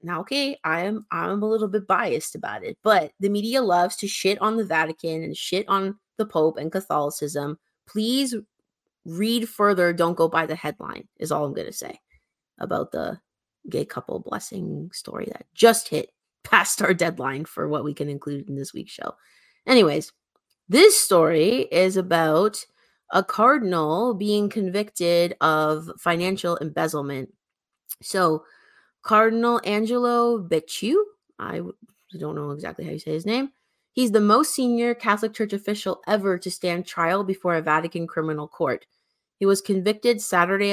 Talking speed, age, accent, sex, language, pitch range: 155 wpm, 20-39, American, female, English, 160-215 Hz